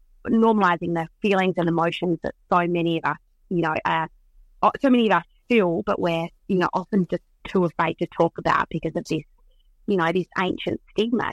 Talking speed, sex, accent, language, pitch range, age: 195 wpm, female, Australian, English, 160-180 Hz, 30-49